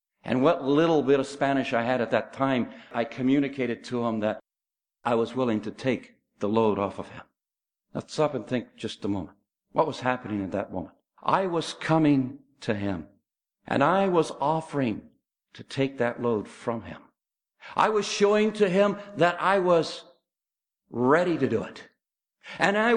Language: English